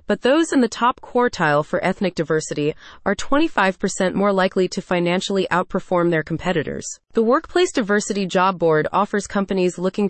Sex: female